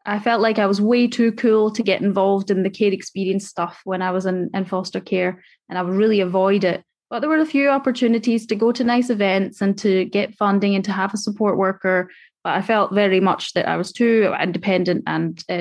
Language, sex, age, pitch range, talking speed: English, female, 20-39, 195-230 Hz, 240 wpm